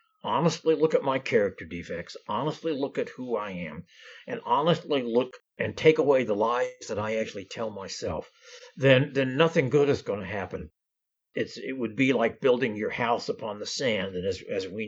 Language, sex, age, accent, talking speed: English, male, 60-79, American, 195 wpm